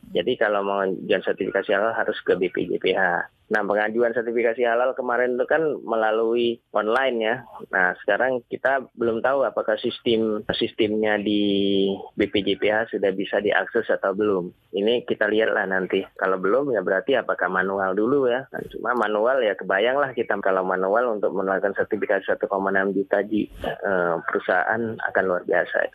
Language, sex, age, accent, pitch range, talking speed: Indonesian, male, 20-39, native, 95-120 Hz, 145 wpm